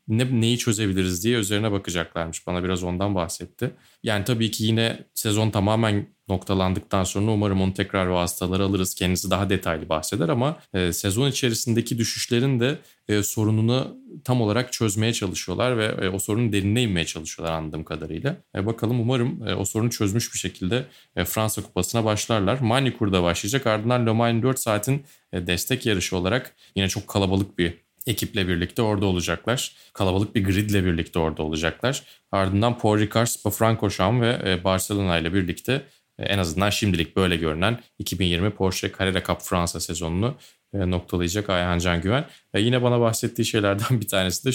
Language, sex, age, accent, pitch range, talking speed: Turkish, male, 30-49, native, 95-115 Hz, 160 wpm